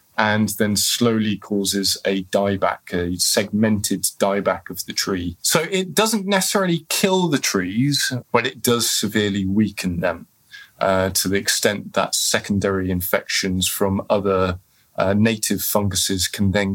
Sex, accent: male, British